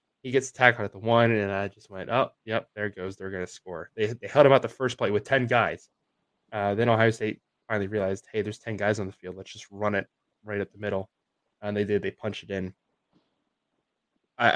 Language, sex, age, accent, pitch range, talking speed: English, male, 20-39, American, 100-115 Hz, 245 wpm